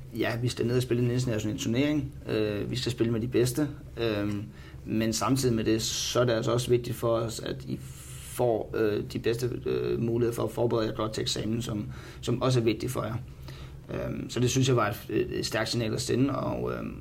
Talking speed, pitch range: 200 wpm, 105-120 Hz